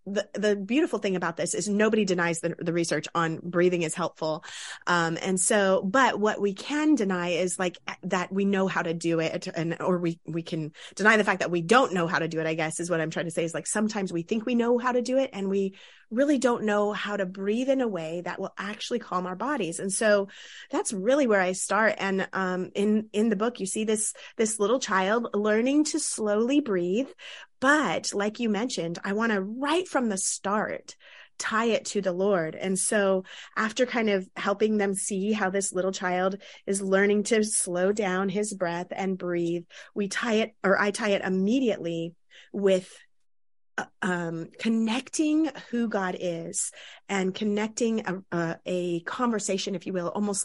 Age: 30-49